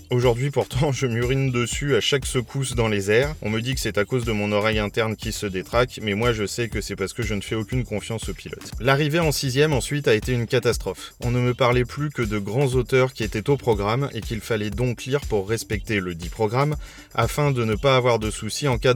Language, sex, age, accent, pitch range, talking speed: French, male, 20-39, French, 105-135 Hz, 255 wpm